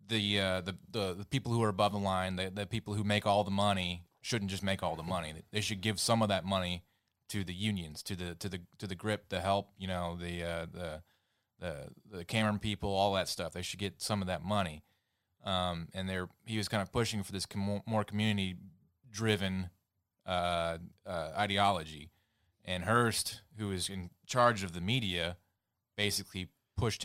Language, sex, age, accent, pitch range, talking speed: English, male, 30-49, American, 90-105 Hz, 200 wpm